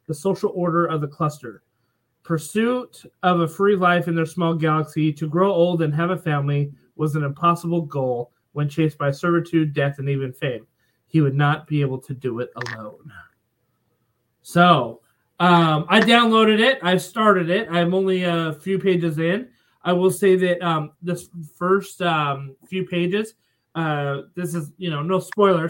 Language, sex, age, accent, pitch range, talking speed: English, male, 20-39, American, 140-175 Hz, 175 wpm